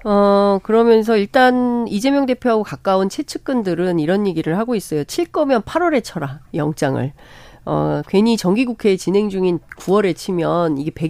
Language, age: Korean, 40-59